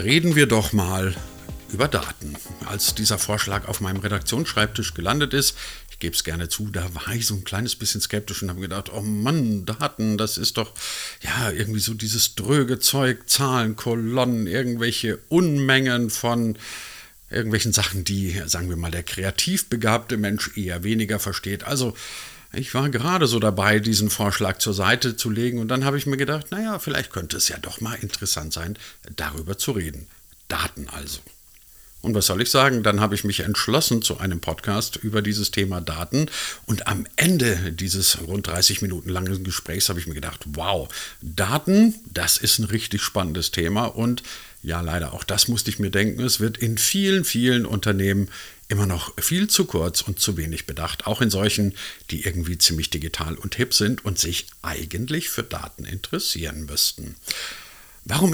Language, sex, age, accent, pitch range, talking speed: German, male, 50-69, German, 90-115 Hz, 175 wpm